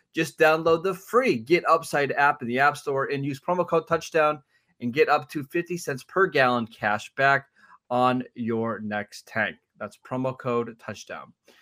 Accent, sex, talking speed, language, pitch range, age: American, male, 175 wpm, English, 120-155 Hz, 20-39